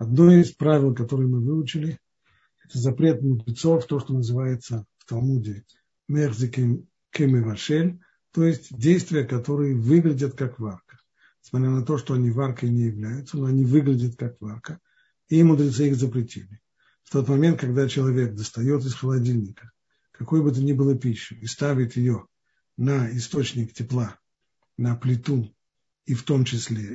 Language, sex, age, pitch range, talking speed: Russian, male, 50-69, 120-155 Hz, 145 wpm